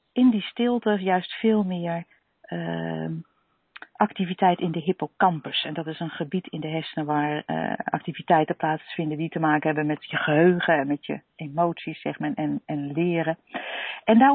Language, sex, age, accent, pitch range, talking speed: Dutch, female, 50-69, Dutch, 165-225 Hz, 170 wpm